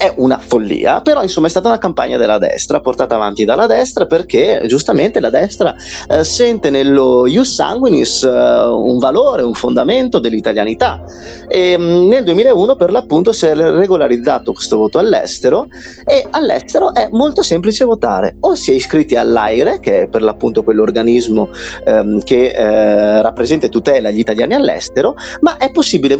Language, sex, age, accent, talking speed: Italian, male, 30-49, native, 155 wpm